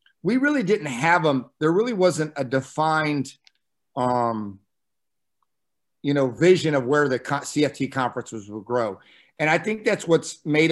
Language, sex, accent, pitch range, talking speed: English, male, American, 135-160 Hz, 155 wpm